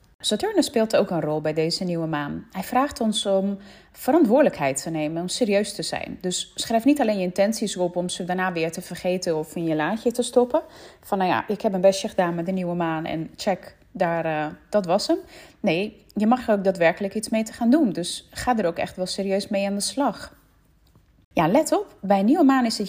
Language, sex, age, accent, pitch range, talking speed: Dutch, female, 30-49, Dutch, 175-235 Hz, 230 wpm